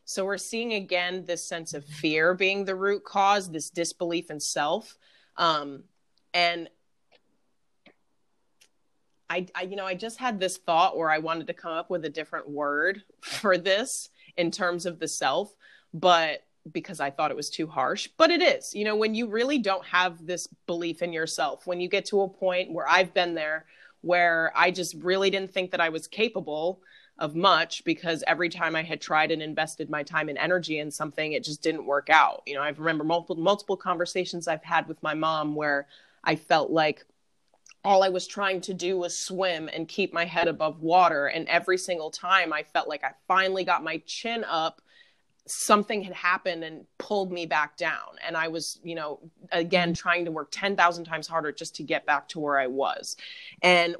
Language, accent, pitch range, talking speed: English, American, 160-190 Hz, 200 wpm